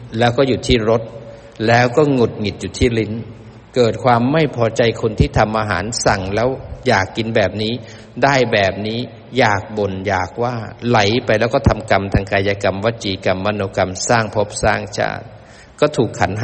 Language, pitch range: Thai, 100-120 Hz